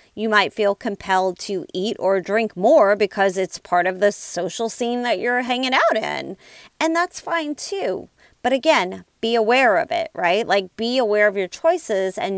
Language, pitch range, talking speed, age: English, 190-235 Hz, 190 wpm, 30-49